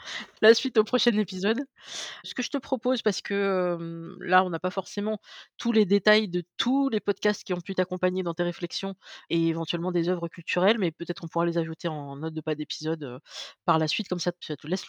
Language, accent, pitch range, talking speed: French, French, 165-200 Hz, 230 wpm